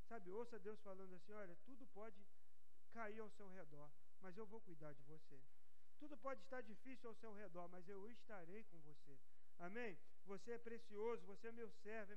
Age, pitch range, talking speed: 40-59, 140-220 Hz, 190 wpm